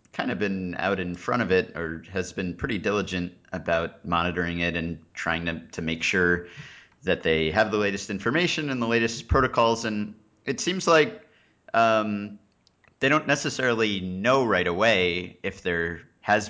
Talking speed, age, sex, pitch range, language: 165 wpm, 30-49, male, 85-105 Hz, English